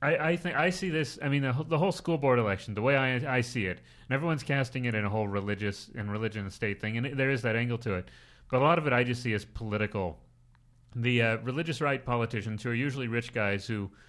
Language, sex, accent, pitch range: English, male, American, 105-130 Hz